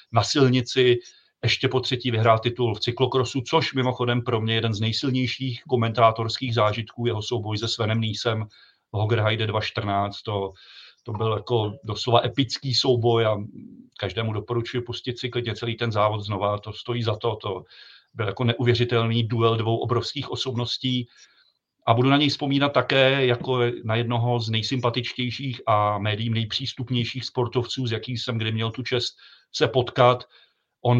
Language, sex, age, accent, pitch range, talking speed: Czech, male, 40-59, native, 110-125 Hz, 155 wpm